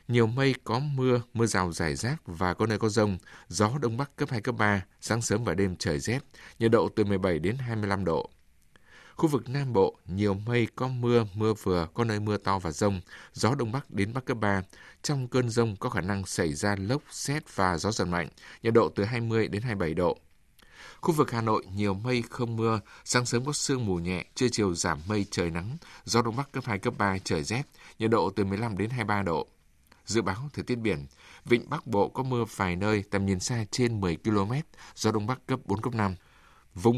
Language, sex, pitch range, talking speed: Vietnamese, male, 100-125 Hz, 225 wpm